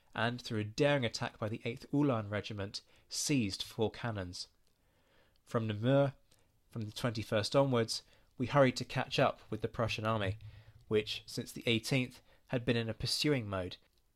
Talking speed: 160 wpm